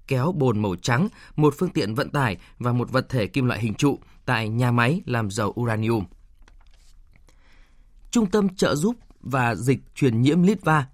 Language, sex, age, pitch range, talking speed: Vietnamese, male, 20-39, 120-165 Hz, 175 wpm